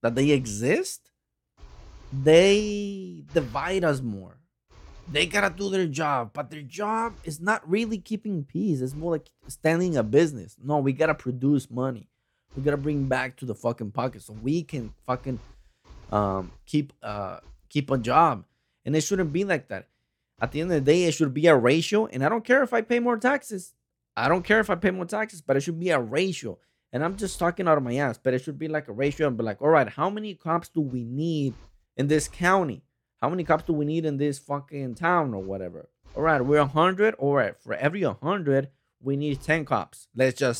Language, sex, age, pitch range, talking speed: English, male, 20-39, 125-185 Hz, 215 wpm